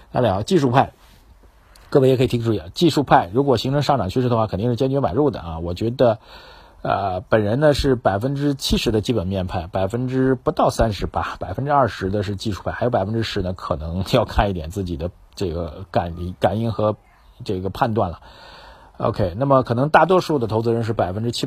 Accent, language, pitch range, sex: native, Chinese, 95-125 Hz, male